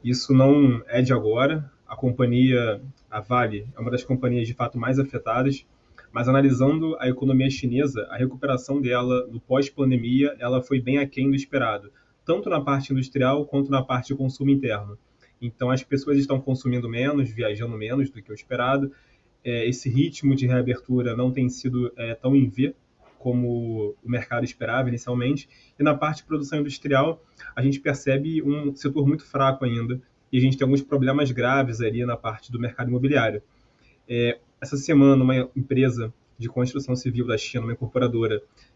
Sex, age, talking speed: male, 20-39, 170 wpm